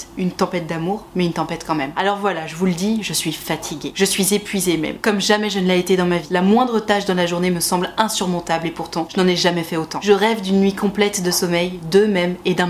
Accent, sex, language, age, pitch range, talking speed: French, female, French, 20-39, 175-220 Hz, 270 wpm